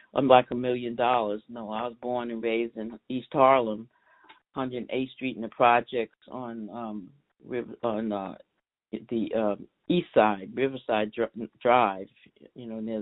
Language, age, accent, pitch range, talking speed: English, 60-79, American, 115-145 Hz, 155 wpm